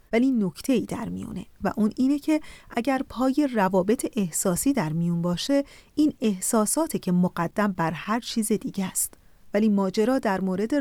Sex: female